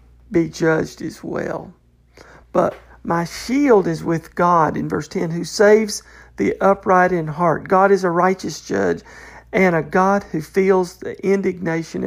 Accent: American